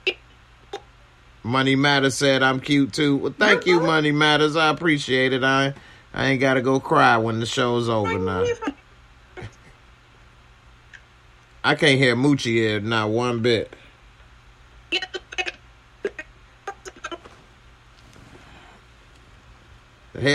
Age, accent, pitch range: 30-49, American, 110-145 Hz